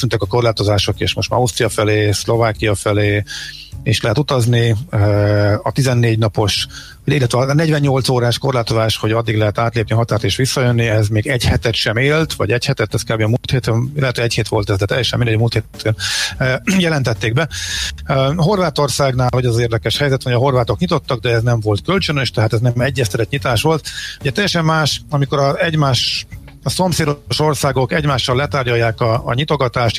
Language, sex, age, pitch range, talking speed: Hungarian, male, 50-69, 110-140 Hz, 175 wpm